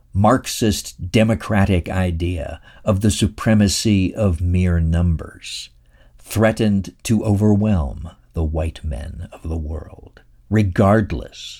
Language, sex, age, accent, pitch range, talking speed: English, male, 60-79, American, 70-100 Hz, 100 wpm